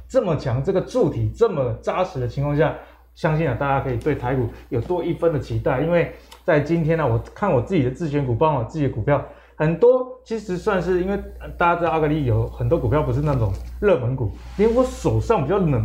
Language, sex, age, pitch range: Chinese, male, 20-39, 125-185 Hz